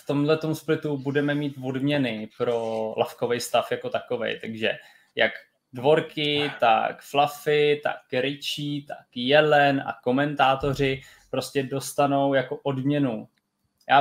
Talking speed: 115 wpm